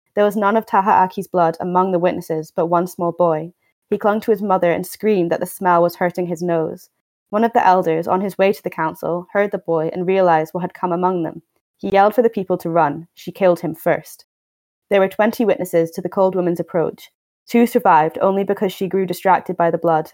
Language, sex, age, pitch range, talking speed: English, female, 20-39, 170-195 Hz, 230 wpm